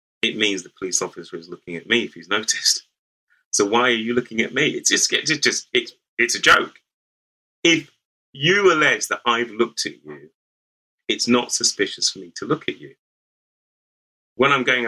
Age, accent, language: 30-49, British, English